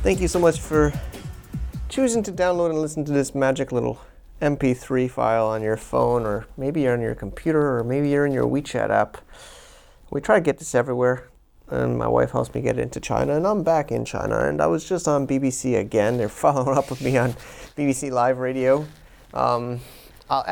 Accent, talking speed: American, 200 wpm